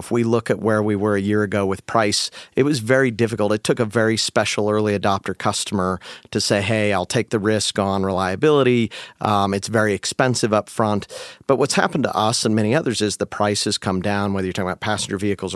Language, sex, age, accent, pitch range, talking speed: English, male, 50-69, American, 105-120 Hz, 230 wpm